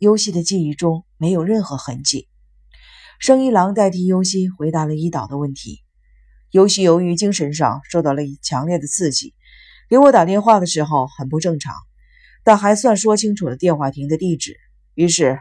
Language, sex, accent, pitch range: Chinese, female, native, 140-195 Hz